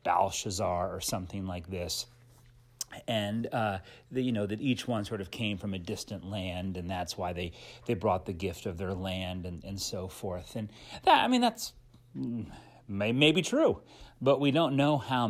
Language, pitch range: English, 105-140 Hz